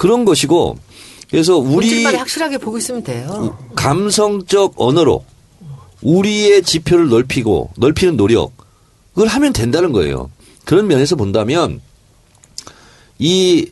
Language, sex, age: Korean, male, 50-69